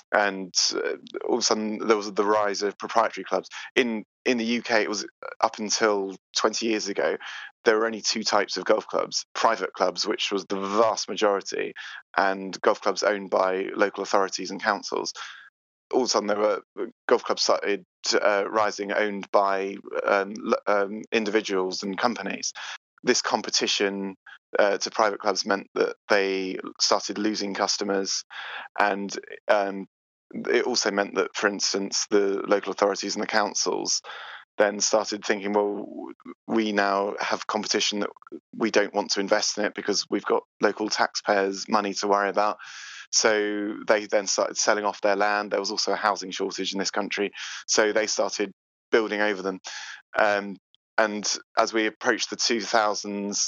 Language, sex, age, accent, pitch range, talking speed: English, male, 20-39, British, 100-105 Hz, 165 wpm